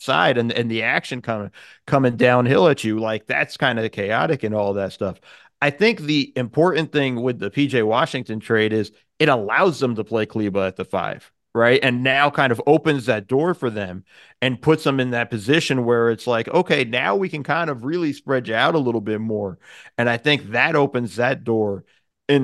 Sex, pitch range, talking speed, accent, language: male, 115-145 Hz, 215 wpm, American, English